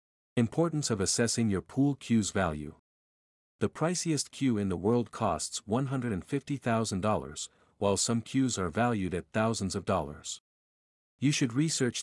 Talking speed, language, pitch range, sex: 135 wpm, English, 95-130 Hz, male